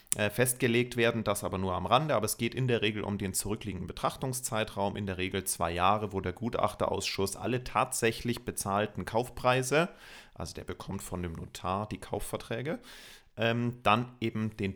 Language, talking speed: German, 165 wpm